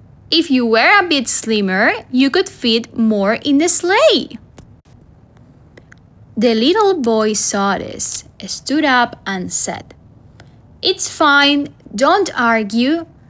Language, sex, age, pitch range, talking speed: English, female, 10-29, 210-295 Hz, 115 wpm